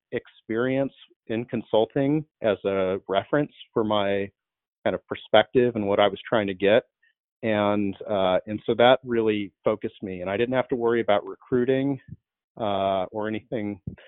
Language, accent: English, American